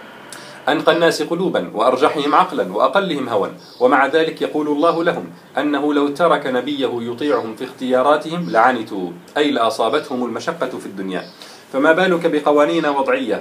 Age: 40-59